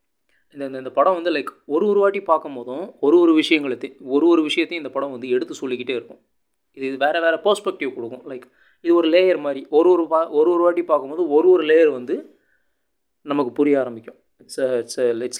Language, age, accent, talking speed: Tamil, 30-49, native, 190 wpm